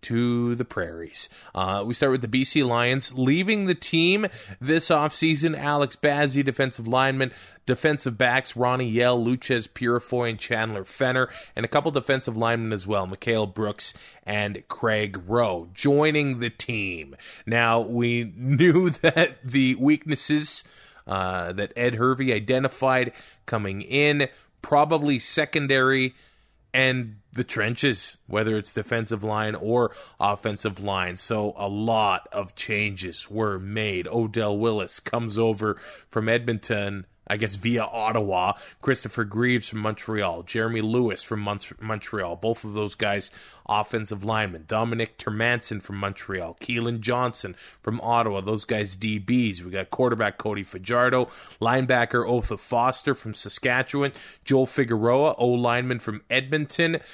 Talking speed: 130 wpm